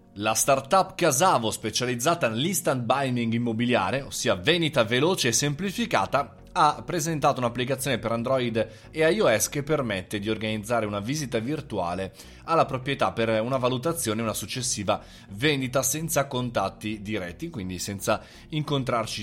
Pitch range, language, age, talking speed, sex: 115-150 Hz, Italian, 30-49, 130 wpm, male